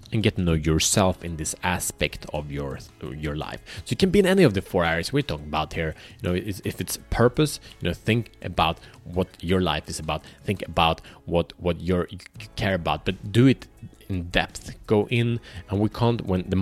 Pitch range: 90-115 Hz